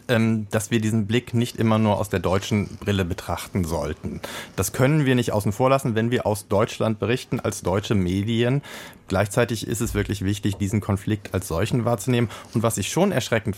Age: 40-59